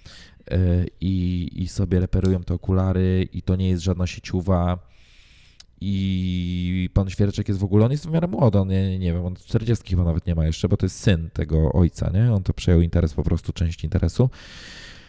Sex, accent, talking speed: male, native, 185 wpm